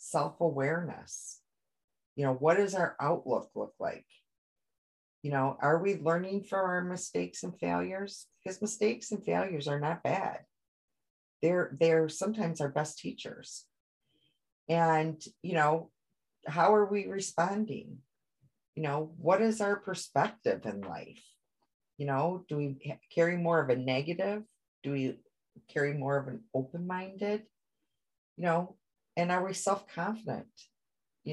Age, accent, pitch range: 40-59, American, 150-195 Hz